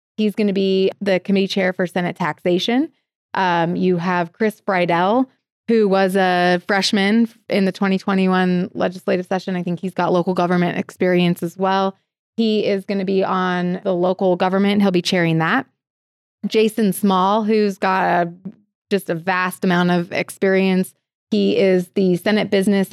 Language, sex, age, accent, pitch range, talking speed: English, female, 20-39, American, 175-200 Hz, 160 wpm